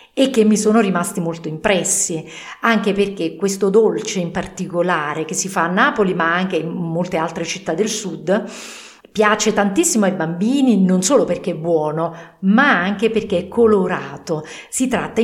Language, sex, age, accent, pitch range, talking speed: English, female, 40-59, Italian, 175-230 Hz, 165 wpm